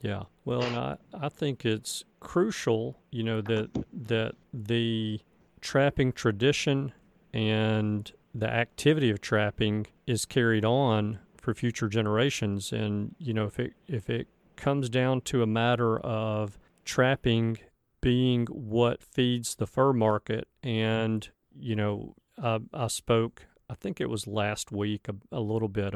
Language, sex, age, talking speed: English, male, 40-59, 145 wpm